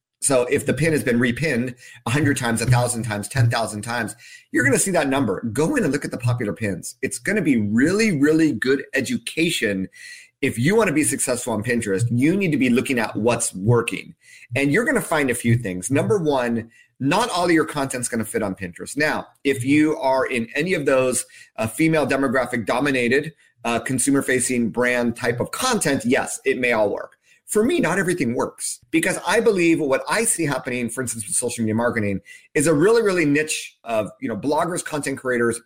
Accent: American